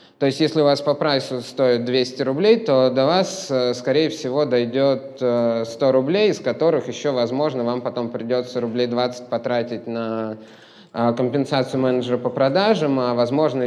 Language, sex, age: Russian, male, 20-39